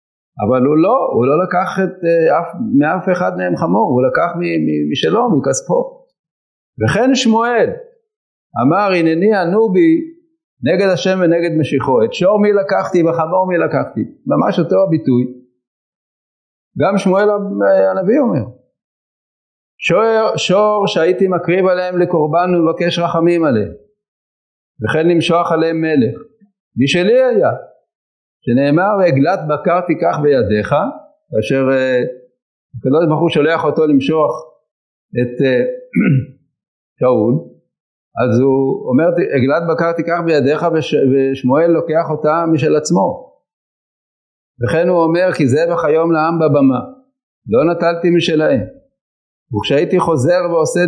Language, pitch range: English, 140-190 Hz